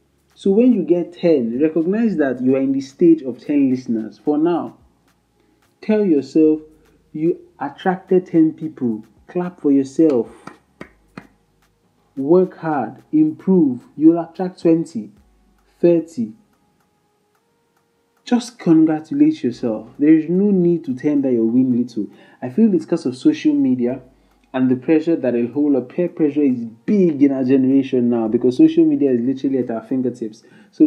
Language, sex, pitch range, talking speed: English, male, 130-185 Hz, 150 wpm